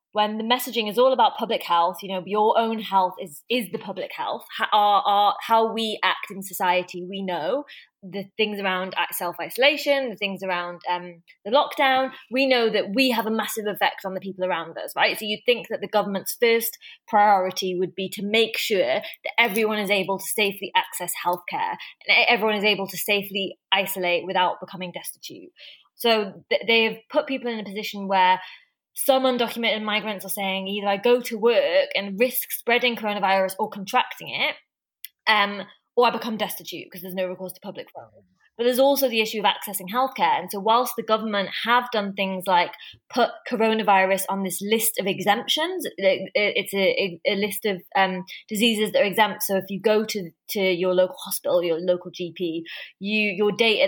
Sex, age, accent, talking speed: female, 20-39, British, 190 wpm